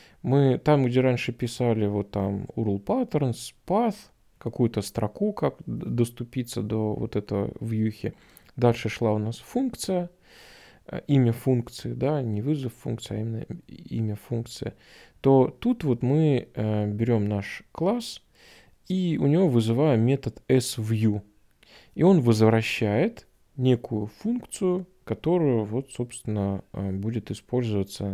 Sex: male